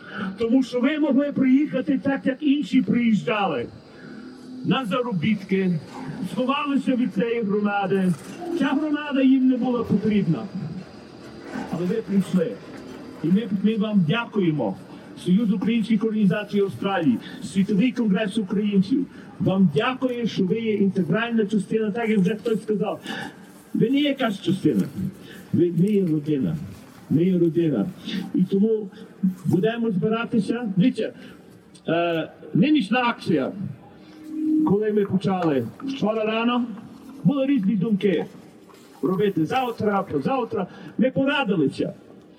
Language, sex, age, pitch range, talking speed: Ukrainian, male, 50-69, 190-240 Hz, 115 wpm